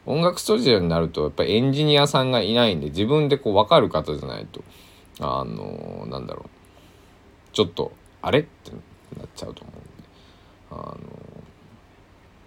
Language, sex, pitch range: Japanese, male, 85-100 Hz